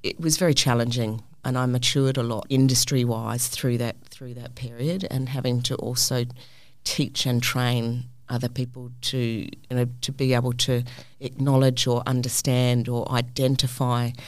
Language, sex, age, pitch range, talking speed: English, female, 40-59, 120-135 Hz, 150 wpm